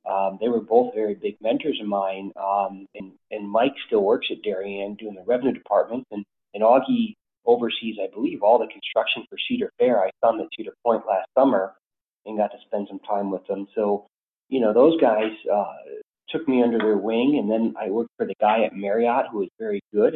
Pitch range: 105-130 Hz